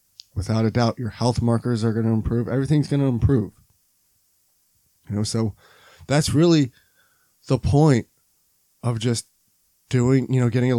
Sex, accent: male, American